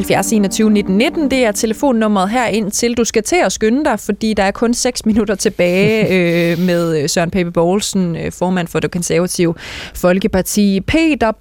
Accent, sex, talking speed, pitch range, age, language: native, female, 160 wpm, 175-235 Hz, 20-39, Danish